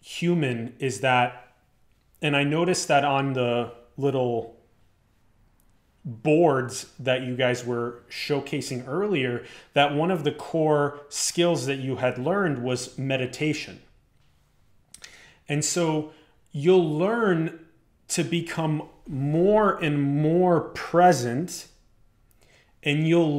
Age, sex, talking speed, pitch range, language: 30-49, male, 105 wpm, 125-165 Hz, English